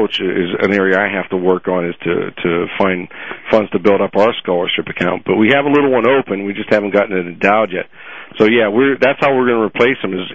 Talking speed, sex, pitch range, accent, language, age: 260 wpm, male, 95-115 Hz, American, English, 50-69